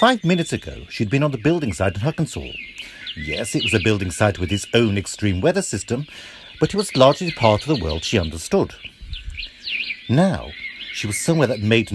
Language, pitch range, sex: English, 105-175 Hz, male